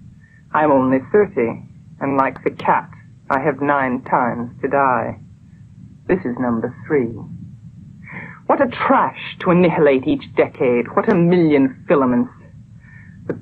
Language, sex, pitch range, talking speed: English, female, 130-165 Hz, 130 wpm